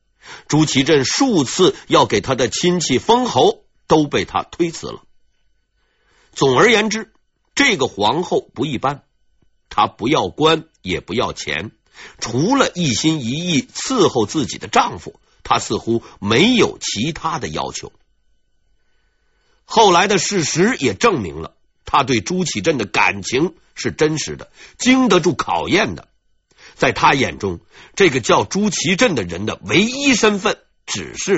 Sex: male